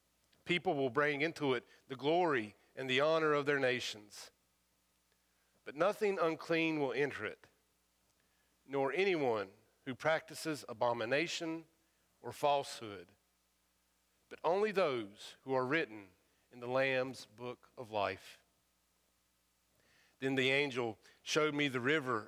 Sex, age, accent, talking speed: male, 40-59, American, 120 wpm